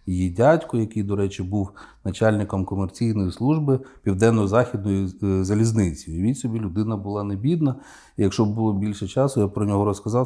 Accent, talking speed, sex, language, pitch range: native, 150 wpm, male, Ukrainian, 95-120 Hz